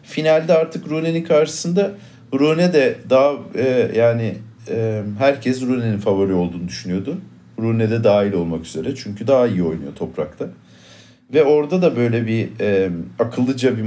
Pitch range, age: 100-130 Hz, 50-69